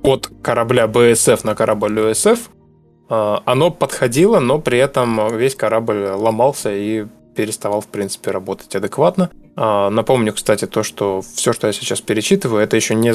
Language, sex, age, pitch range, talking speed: Russian, male, 20-39, 105-120 Hz, 145 wpm